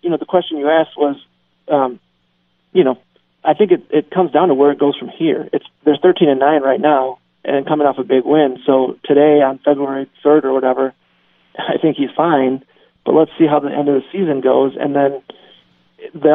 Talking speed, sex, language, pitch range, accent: 215 wpm, male, English, 135-155 Hz, American